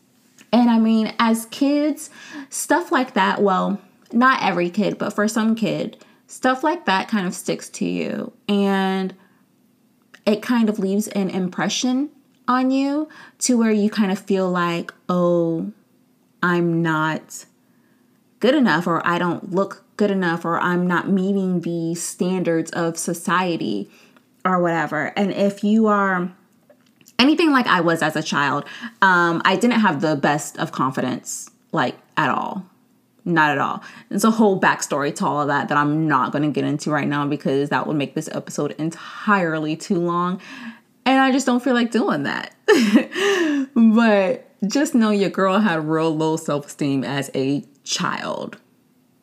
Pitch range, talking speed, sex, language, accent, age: 170-245 Hz, 160 wpm, female, English, American, 20-39